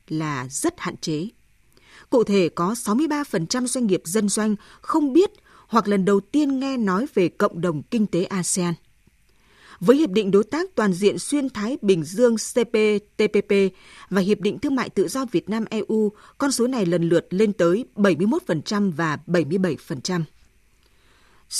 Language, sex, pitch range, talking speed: Vietnamese, female, 180-245 Hz, 160 wpm